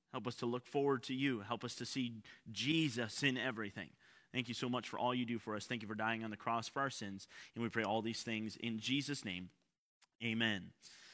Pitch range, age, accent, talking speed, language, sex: 130-170 Hz, 30-49, American, 235 wpm, English, male